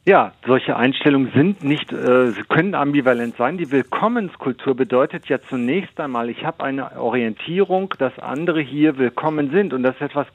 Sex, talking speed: male, 170 wpm